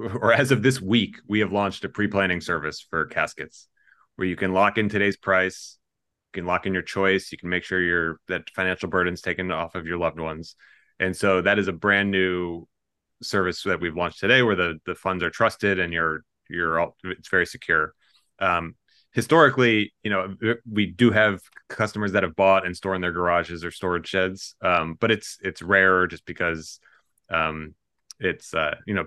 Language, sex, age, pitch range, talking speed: English, male, 30-49, 90-105 Hz, 200 wpm